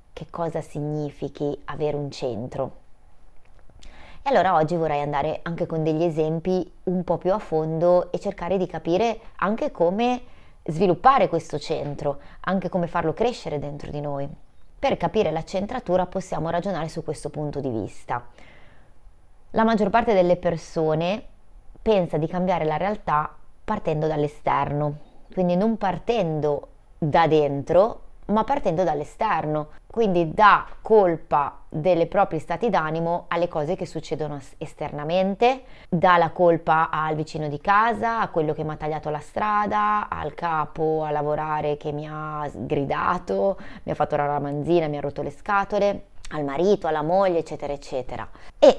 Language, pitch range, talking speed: Italian, 150-185 Hz, 145 wpm